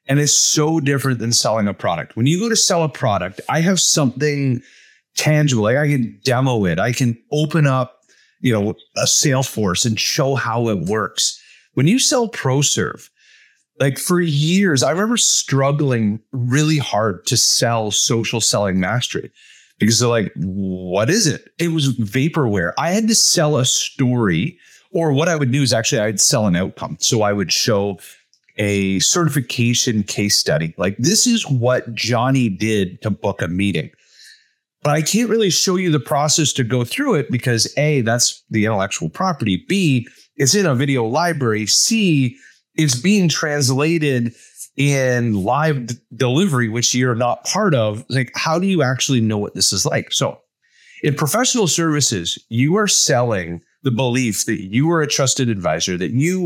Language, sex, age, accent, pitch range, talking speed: English, male, 30-49, American, 110-155 Hz, 170 wpm